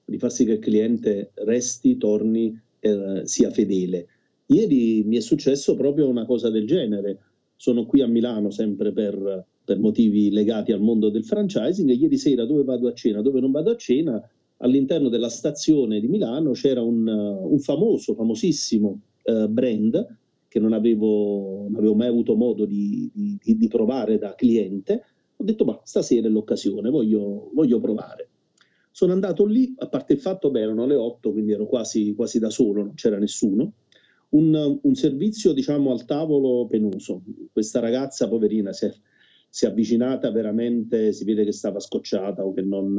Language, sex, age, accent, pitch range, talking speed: Italian, male, 40-59, native, 105-135 Hz, 170 wpm